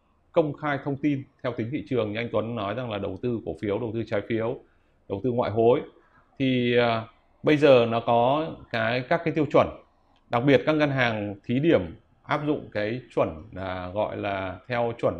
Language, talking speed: Vietnamese, 205 wpm